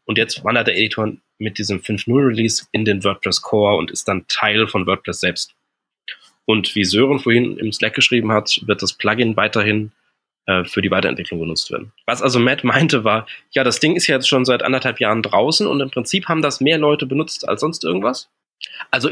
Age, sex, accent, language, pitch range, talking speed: 20-39, male, German, German, 105-135 Hz, 200 wpm